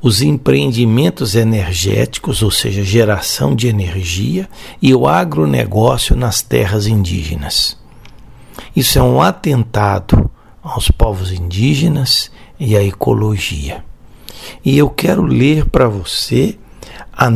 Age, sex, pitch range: 60-79, male, 105-135 Hz